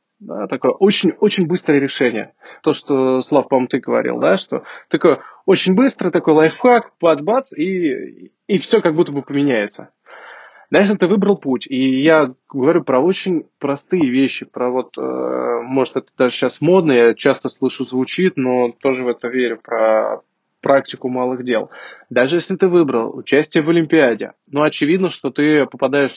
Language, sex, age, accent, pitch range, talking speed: Russian, male, 20-39, native, 130-170 Hz, 165 wpm